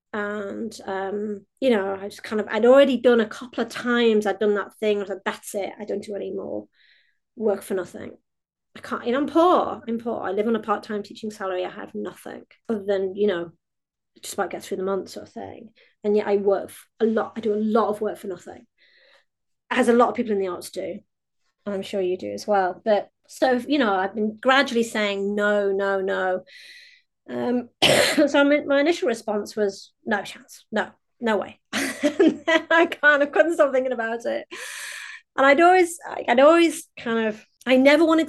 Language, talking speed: English, 215 wpm